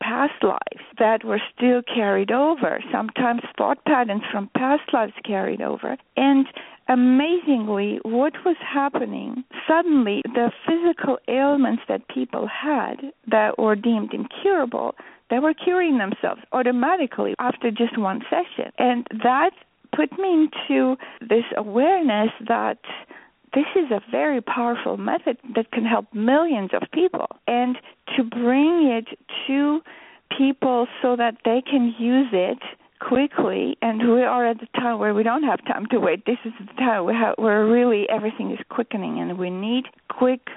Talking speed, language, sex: 150 wpm, English, female